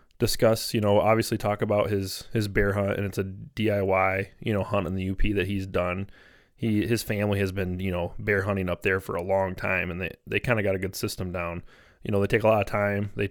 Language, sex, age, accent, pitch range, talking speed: English, male, 20-39, American, 95-105 Hz, 255 wpm